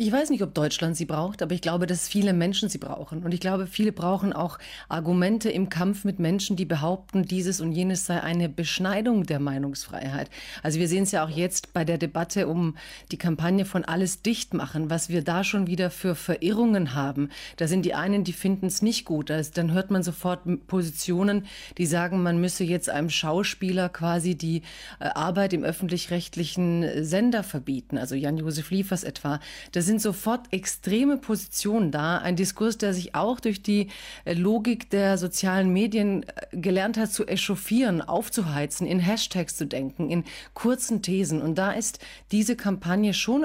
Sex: female